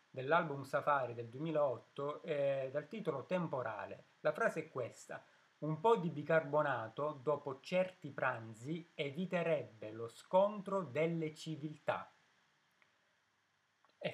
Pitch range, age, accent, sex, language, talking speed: 140-175 Hz, 30-49, native, male, Italian, 105 wpm